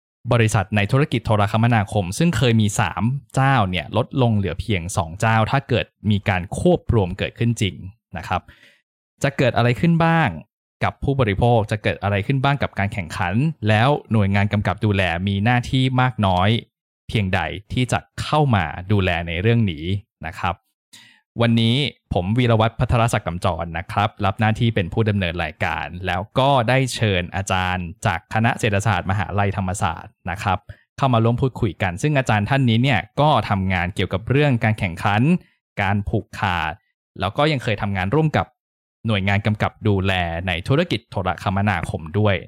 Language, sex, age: Thai, male, 20-39